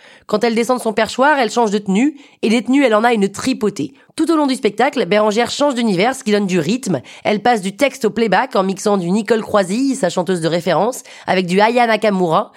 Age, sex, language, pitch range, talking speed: 20-39, female, French, 200-245 Hz, 240 wpm